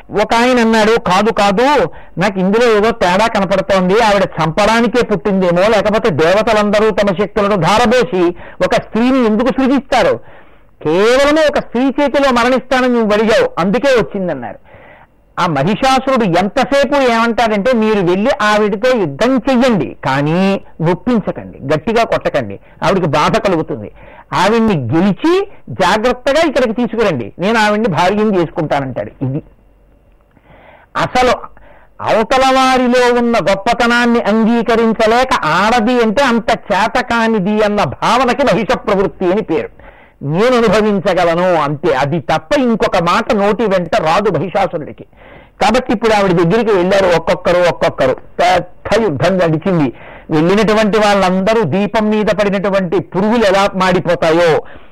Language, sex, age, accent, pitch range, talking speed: Telugu, male, 50-69, native, 185-240 Hz, 110 wpm